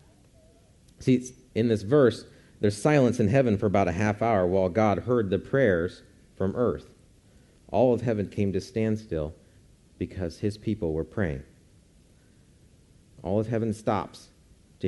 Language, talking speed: English, 150 wpm